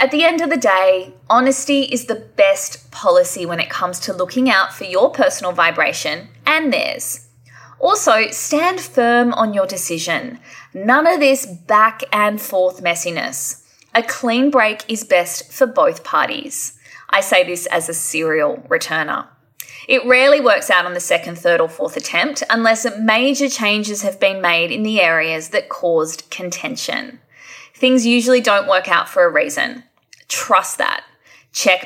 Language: English